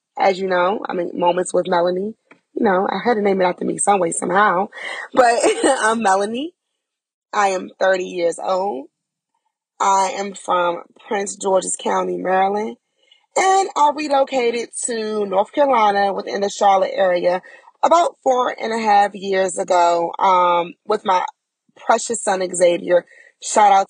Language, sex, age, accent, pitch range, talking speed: English, female, 20-39, American, 185-265 Hz, 150 wpm